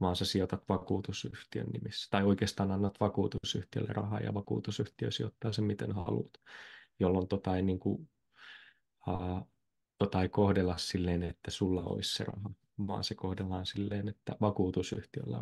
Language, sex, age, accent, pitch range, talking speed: Finnish, male, 20-39, native, 95-105 Hz, 140 wpm